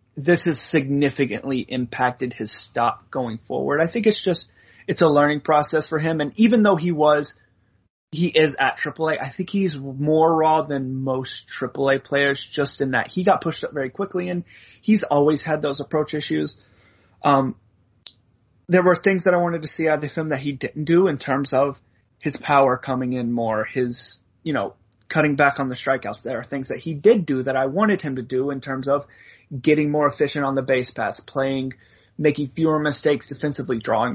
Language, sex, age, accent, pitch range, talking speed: English, male, 30-49, American, 130-170 Hz, 200 wpm